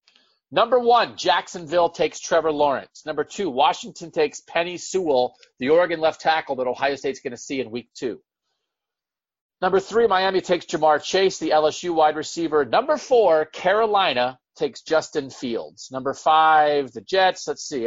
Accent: American